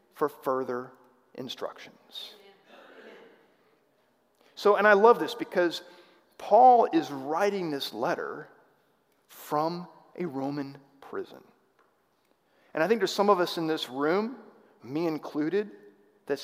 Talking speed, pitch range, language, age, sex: 115 wpm, 145-200 Hz, English, 40-59, male